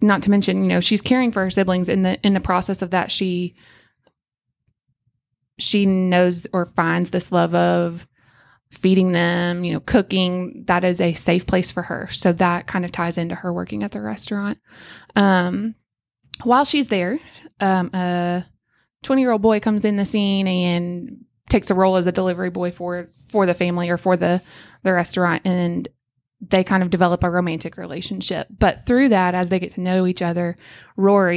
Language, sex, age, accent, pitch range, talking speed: English, female, 20-39, American, 175-195 Hz, 185 wpm